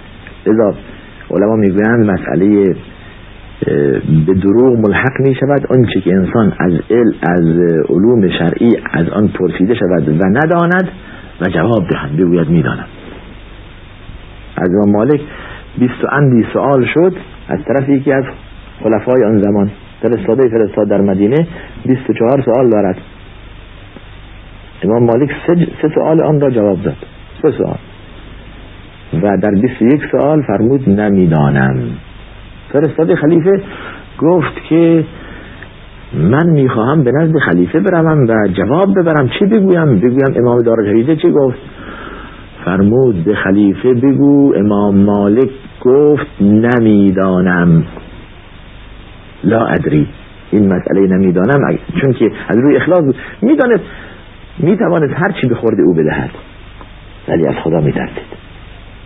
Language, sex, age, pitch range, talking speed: Persian, male, 50-69, 95-135 Hz, 115 wpm